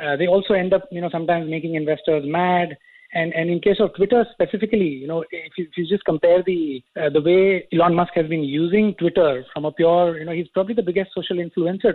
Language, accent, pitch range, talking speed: English, Indian, 155-195 Hz, 235 wpm